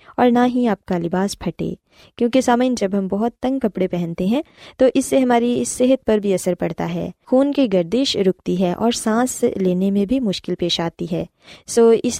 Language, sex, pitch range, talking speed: Urdu, female, 180-235 Hz, 210 wpm